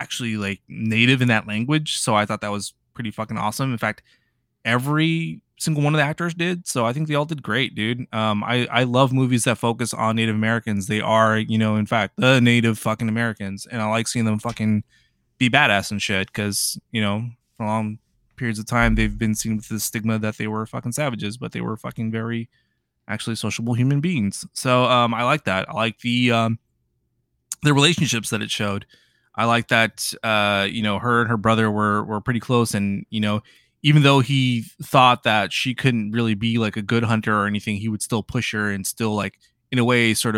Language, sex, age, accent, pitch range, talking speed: English, male, 20-39, American, 105-120 Hz, 220 wpm